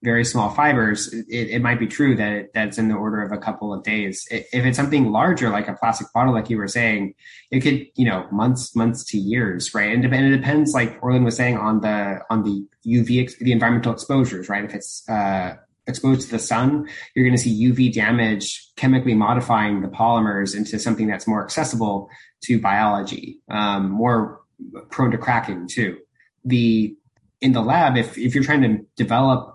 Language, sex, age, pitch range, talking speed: English, male, 20-39, 105-125 Hz, 195 wpm